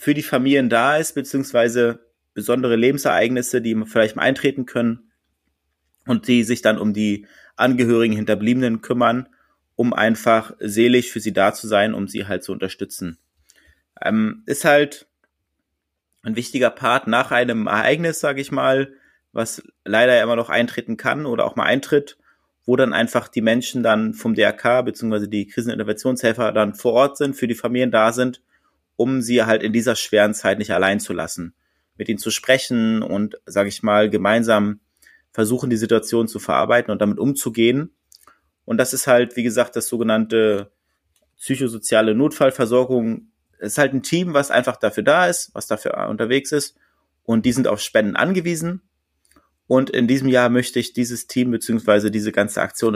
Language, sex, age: German, male, 30-49